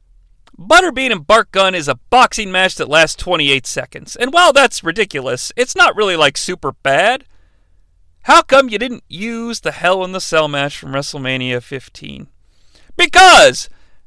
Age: 40-59